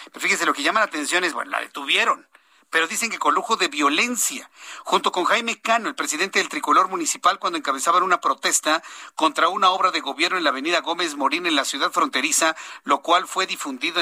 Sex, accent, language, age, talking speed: male, Mexican, Spanish, 50-69, 210 wpm